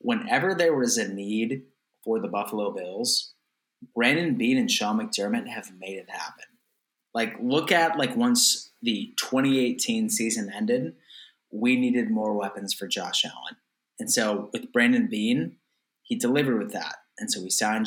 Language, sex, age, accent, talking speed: English, male, 20-39, American, 160 wpm